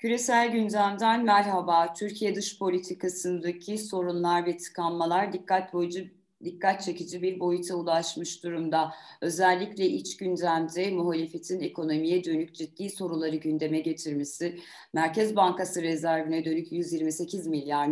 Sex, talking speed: female, 110 wpm